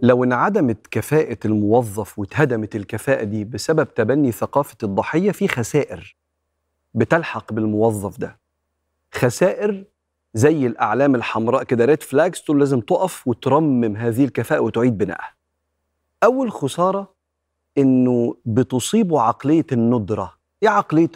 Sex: male